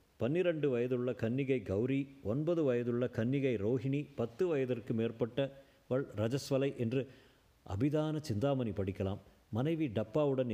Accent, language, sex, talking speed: native, Tamil, male, 100 wpm